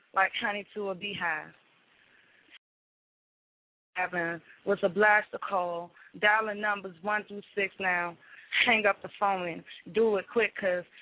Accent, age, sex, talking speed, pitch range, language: American, 20-39, female, 140 wpm, 185-215 Hz, English